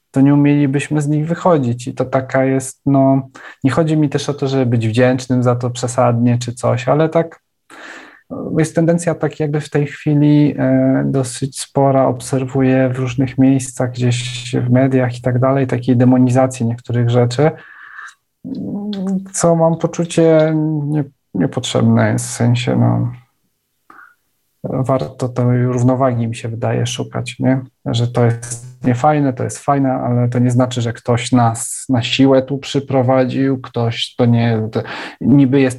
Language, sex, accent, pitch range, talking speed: Polish, male, native, 120-135 Hz, 155 wpm